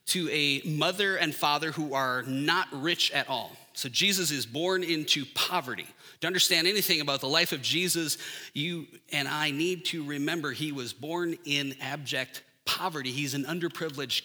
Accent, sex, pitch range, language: American, male, 145-190 Hz, English